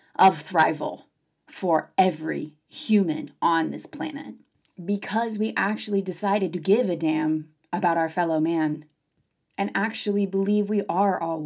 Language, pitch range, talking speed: English, 170-270 Hz, 135 wpm